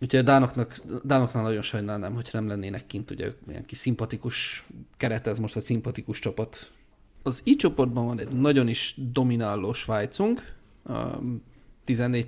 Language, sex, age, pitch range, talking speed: Hungarian, male, 30-49, 115-130 Hz, 145 wpm